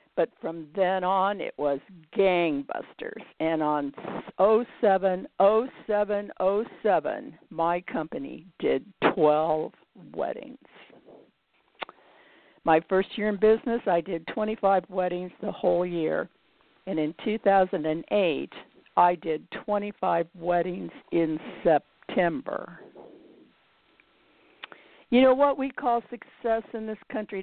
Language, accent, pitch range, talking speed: English, American, 170-220 Hz, 100 wpm